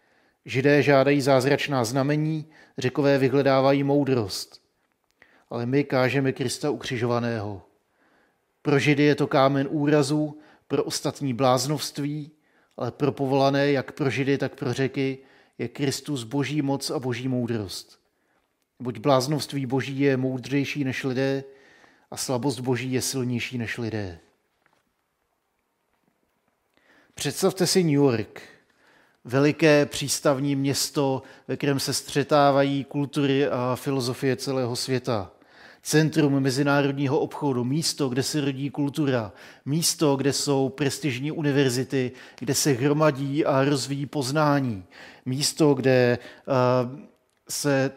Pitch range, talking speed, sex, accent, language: 130-145 Hz, 110 wpm, male, native, Czech